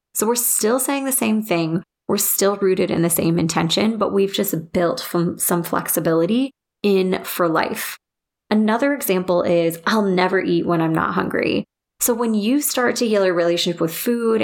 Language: English